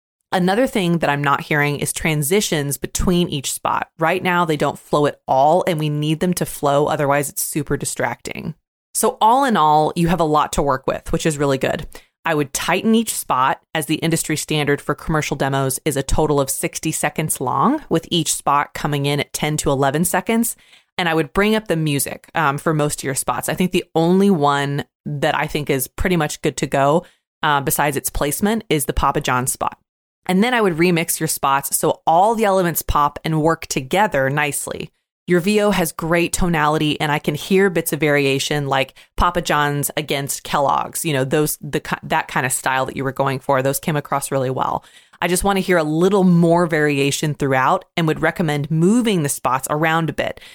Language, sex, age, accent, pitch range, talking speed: English, female, 20-39, American, 140-175 Hz, 210 wpm